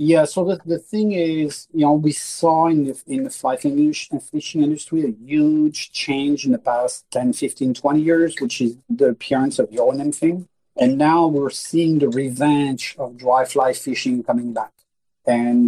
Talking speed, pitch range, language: 185 wpm, 125-160 Hz, English